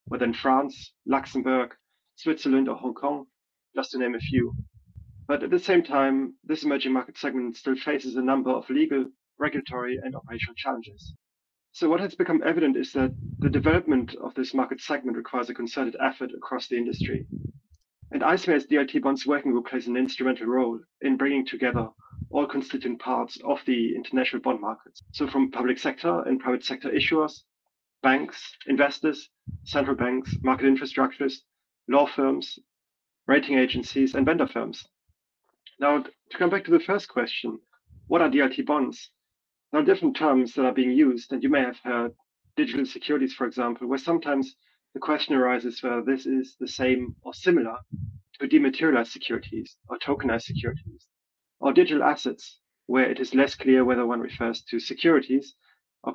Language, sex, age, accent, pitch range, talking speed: English, male, 30-49, German, 125-145 Hz, 165 wpm